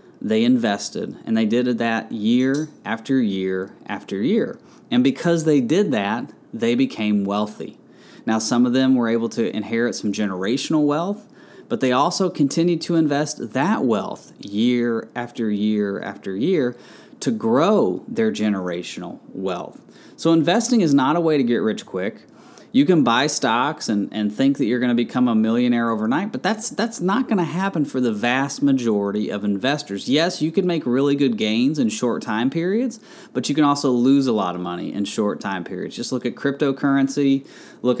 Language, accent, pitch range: English, American, 110-170 Hz